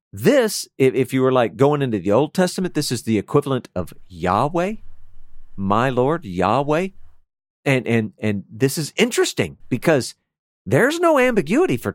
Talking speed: 145 wpm